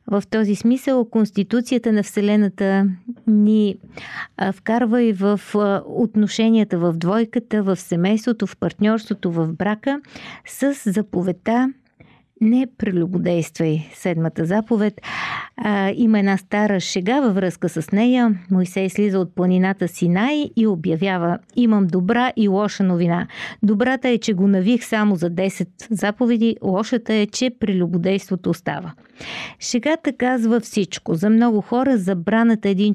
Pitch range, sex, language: 185-225 Hz, female, Bulgarian